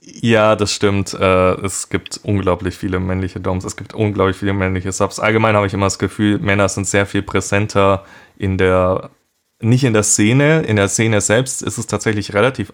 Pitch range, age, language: 100-115 Hz, 20-39, German